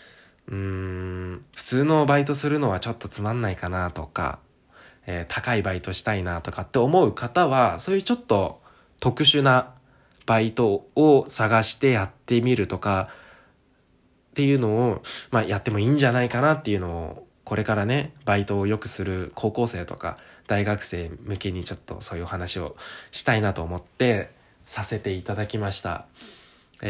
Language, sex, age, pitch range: Japanese, male, 20-39, 95-125 Hz